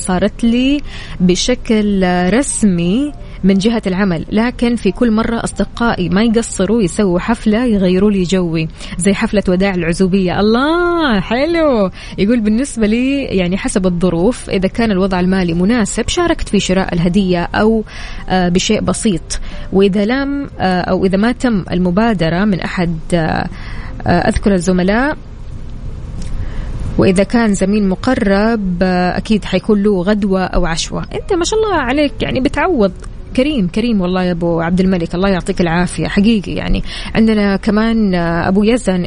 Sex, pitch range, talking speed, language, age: female, 180-235 Hz, 135 wpm, Arabic, 20-39